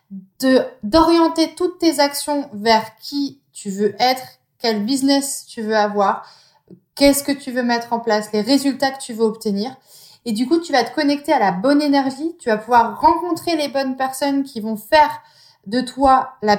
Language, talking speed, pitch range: French, 190 wpm, 210-285 Hz